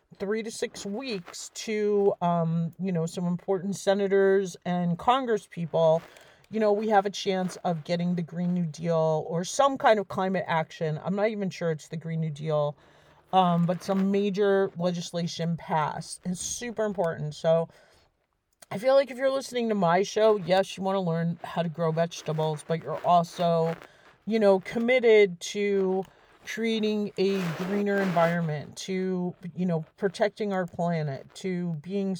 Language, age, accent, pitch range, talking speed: English, 40-59, American, 165-200 Hz, 165 wpm